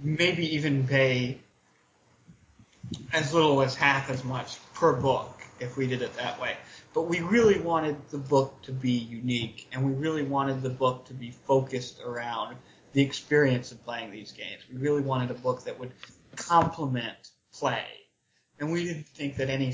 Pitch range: 125-145 Hz